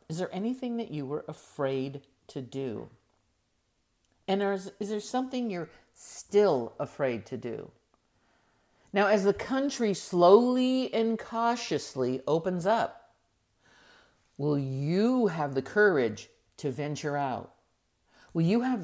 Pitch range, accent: 135-210 Hz, American